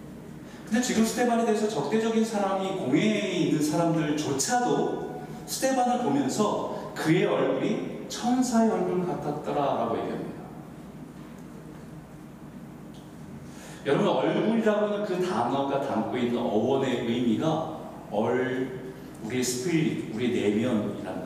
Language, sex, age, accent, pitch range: Korean, male, 40-59, native, 120-190 Hz